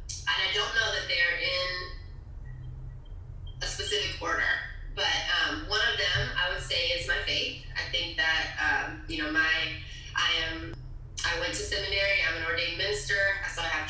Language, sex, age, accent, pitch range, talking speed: English, female, 20-39, American, 120-165 Hz, 175 wpm